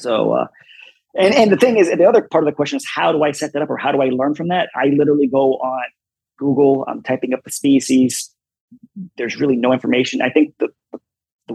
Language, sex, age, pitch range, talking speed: English, male, 30-49, 130-175 Hz, 235 wpm